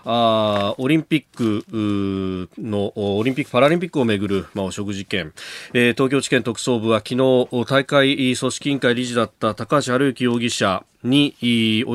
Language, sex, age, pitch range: Japanese, male, 40-59, 100-125 Hz